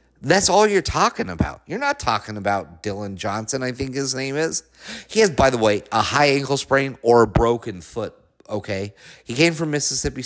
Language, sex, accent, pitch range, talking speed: English, male, American, 120-155 Hz, 200 wpm